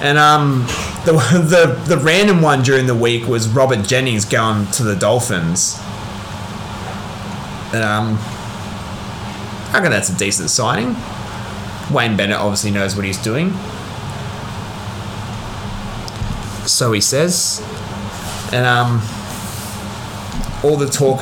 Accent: Australian